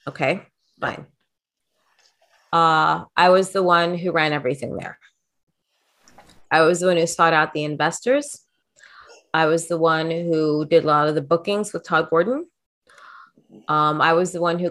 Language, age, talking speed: English, 30-49, 165 wpm